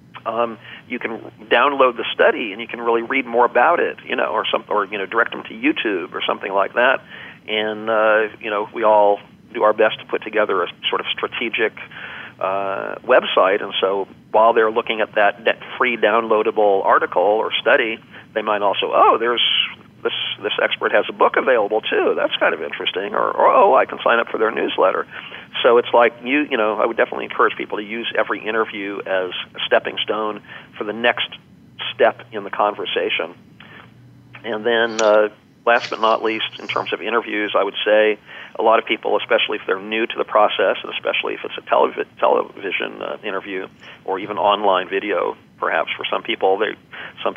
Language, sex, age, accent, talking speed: English, male, 40-59, American, 200 wpm